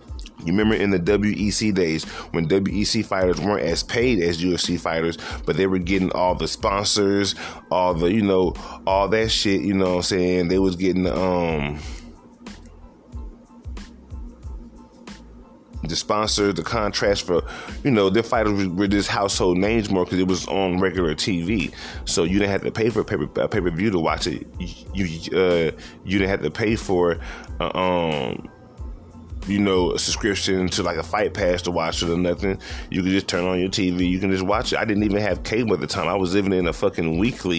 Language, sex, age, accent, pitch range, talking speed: English, male, 20-39, American, 85-100 Hz, 200 wpm